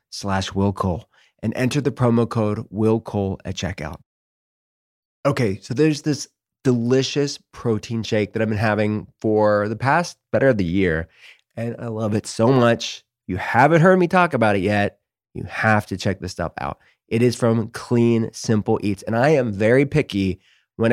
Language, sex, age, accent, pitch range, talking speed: English, male, 20-39, American, 105-125 Hz, 180 wpm